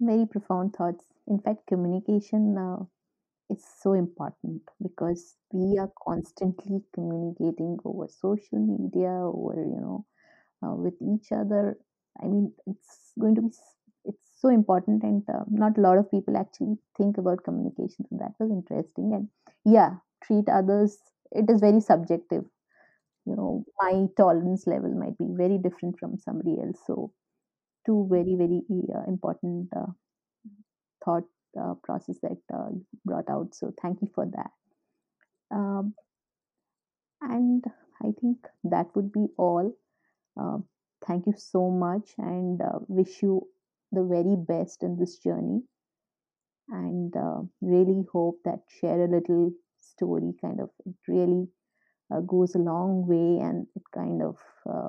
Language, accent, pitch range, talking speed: English, Indian, 180-215 Hz, 145 wpm